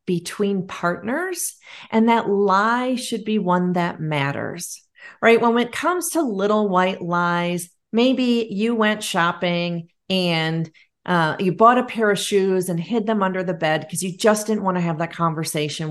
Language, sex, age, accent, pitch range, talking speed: English, female, 40-59, American, 170-230 Hz, 170 wpm